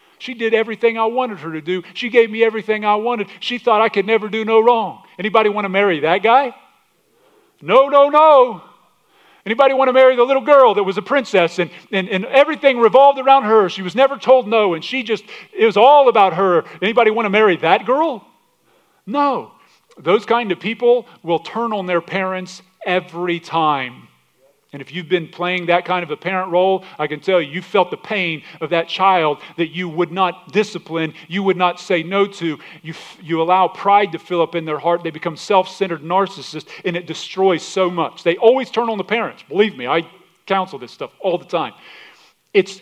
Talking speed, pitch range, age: 210 wpm, 170-225 Hz, 40-59